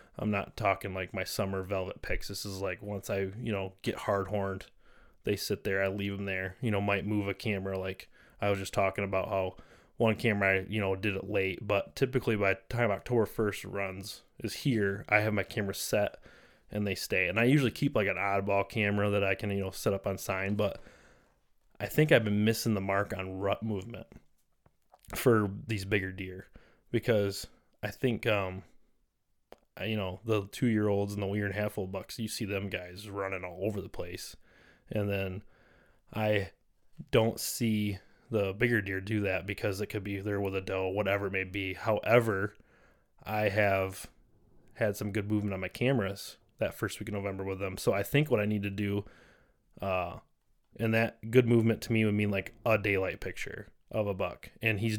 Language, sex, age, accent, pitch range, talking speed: English, male, 20-39, American, 95-110 Hz, 200 wpm